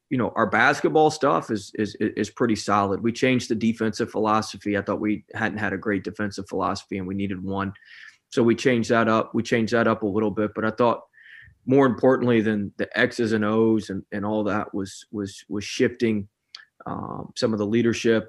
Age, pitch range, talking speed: 20-39, 105-115 Hz, 205 wpm